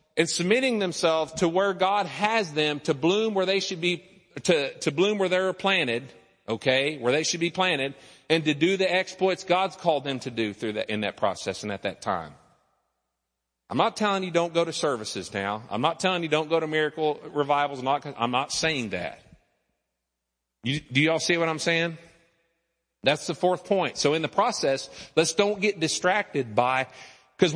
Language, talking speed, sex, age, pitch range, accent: English, 195 wpm, male, 40-59, 130-190 Hz, American